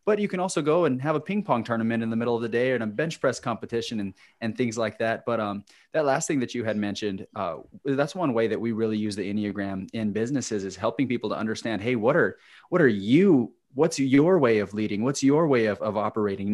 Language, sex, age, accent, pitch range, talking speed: English, male, 20-39, American, 105-135 Hz, 255 wpm